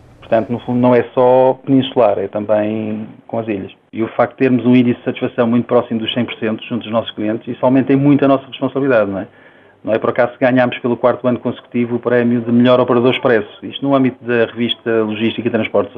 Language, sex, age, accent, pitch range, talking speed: Portuguese, male, 40-59, Portuguese, 115-125 Hz, 230 wpm